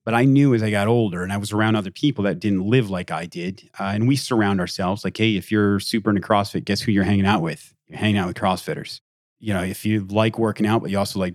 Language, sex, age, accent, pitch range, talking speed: English, male, 30-49, American, 95-115 Hz, 280 wpm